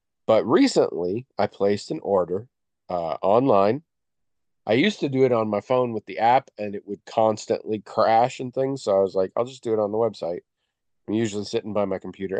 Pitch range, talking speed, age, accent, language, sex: 95-125 Hz, 210 wpm, 40-59, American, English, male